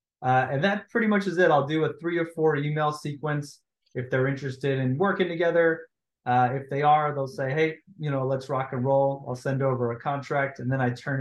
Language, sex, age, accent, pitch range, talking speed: English, male, 30-49, American, 125-145 Hz, 230 wpm